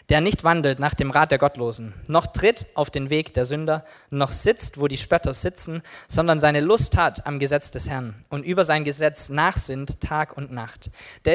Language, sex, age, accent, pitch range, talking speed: German, male, 20-39, German, 140-175 Hz, 200 wpm